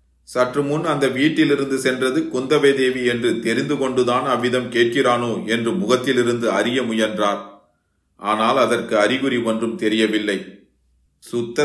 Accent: native